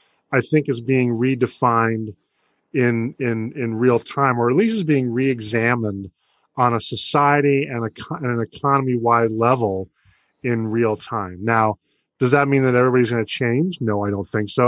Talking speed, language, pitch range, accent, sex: 170 wpm, English, 115-130 Hz, American, male